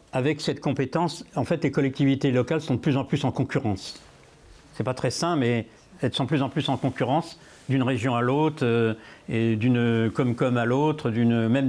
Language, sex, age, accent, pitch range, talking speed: French, male, 60-79, French, 120-145 Hz, 210 wpm